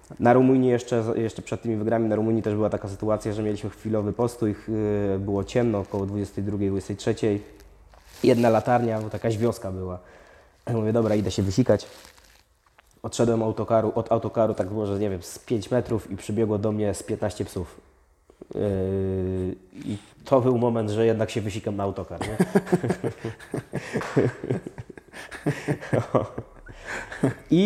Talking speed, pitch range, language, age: 140 wpm, 105-120 Hz, Polish, 20-39